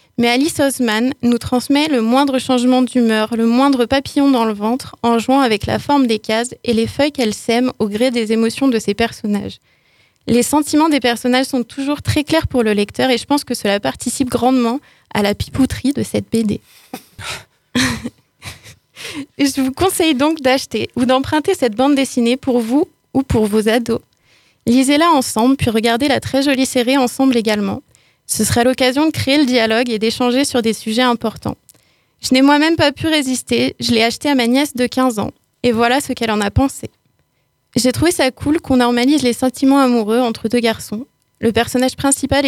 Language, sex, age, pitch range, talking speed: French, female, 20-39, 230-270 Hz, 190 wpm